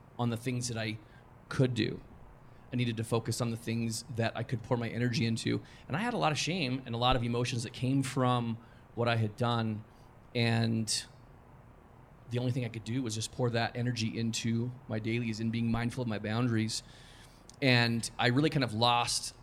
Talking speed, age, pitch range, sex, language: 205 wpm, 30-49, 115-125 Hz, male, English